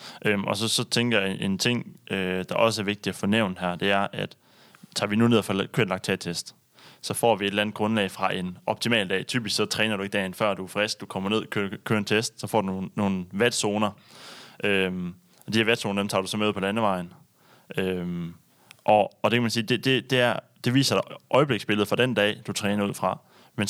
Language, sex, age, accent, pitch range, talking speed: Danish, male, 20-39, native, 95-115 Hz, 245 wpm